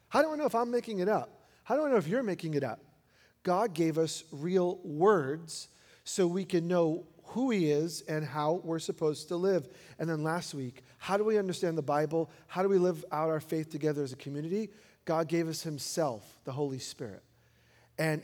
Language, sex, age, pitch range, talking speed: English, male, 40-59, 150-195 Hz, 215 wpm